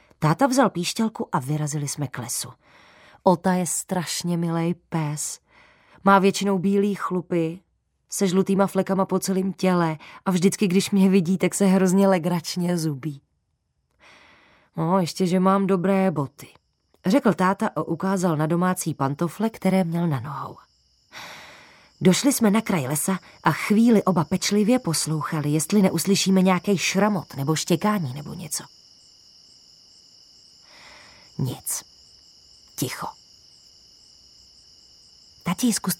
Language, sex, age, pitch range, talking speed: Czech, female, 20-39, 165-215 Hz, 120 wpm